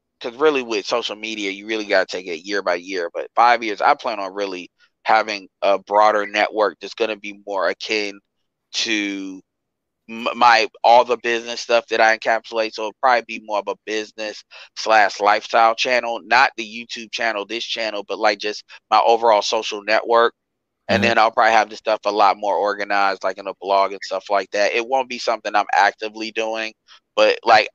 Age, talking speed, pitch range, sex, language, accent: 20-39, 200 wpm, 105-115 Hz, male, English, American